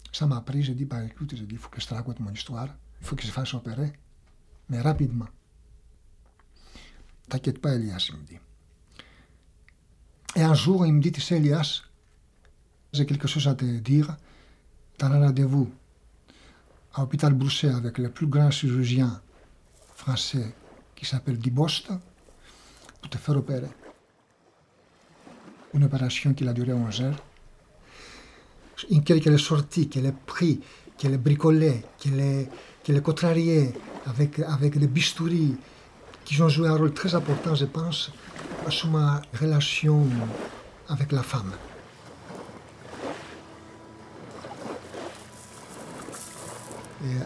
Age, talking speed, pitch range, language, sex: 60-79, 135 wpm, 120-150 Hz, French, male